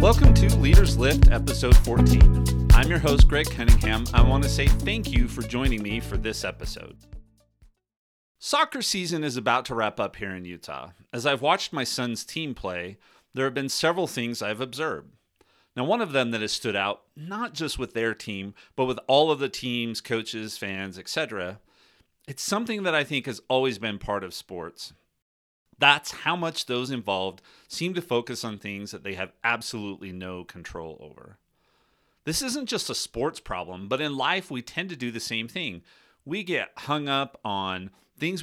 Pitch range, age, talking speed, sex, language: 100-135 Hz, 40-59, 185 wpm, male, English